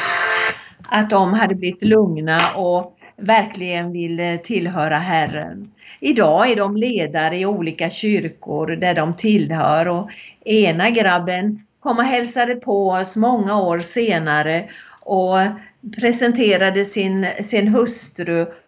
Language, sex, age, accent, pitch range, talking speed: Swedish, female, 50-69, native, 175-215 Hz, 115 wpm